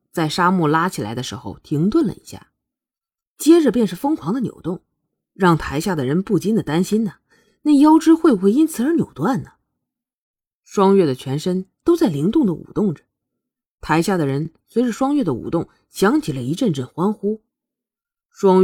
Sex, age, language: female, 20-39, Chinese